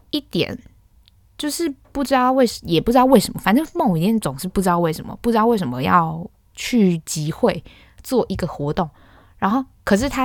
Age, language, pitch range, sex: 10-29, Chinese, 155-215 Hz, female